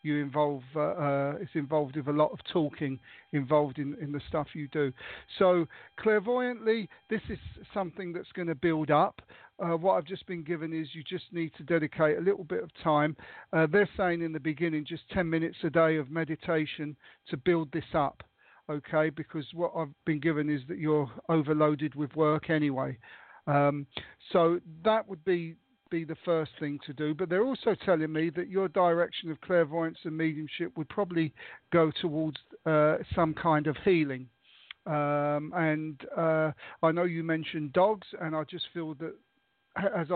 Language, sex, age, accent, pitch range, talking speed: English, male, 50-69, British, 150-175 Hz, 180 wpm